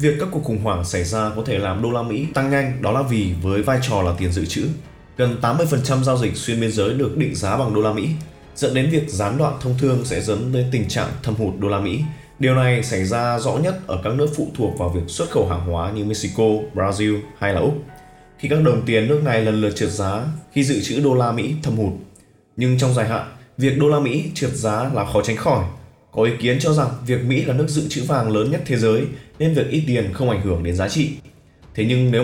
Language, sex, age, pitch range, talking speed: Vietnamese, male, 20-39, 100-140 Hz, 260 wpm